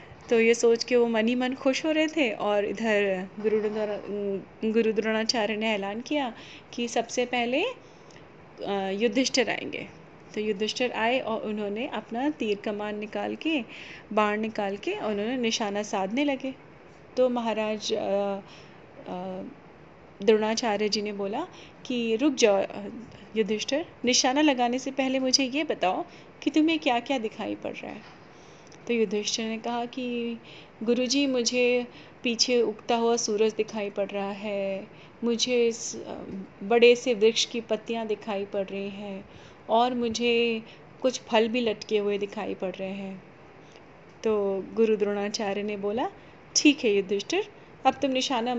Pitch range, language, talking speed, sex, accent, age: 210-250 Hz, Hindi, 140 wpm, female, native, 30-49